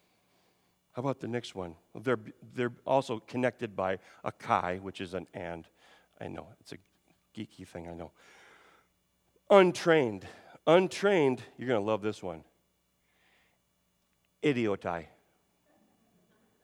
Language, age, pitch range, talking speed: English, 40-59, 80-135 Hz, 120 wpm